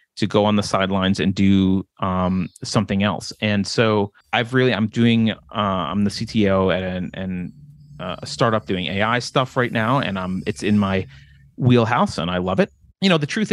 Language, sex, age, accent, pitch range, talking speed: English, male, 30-49, American, 105-150 Hz, 200 wpm